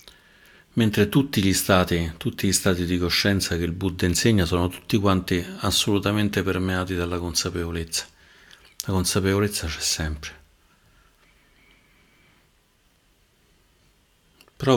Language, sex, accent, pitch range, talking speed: Italian, male, native, 85-100 Hz, 100 wpm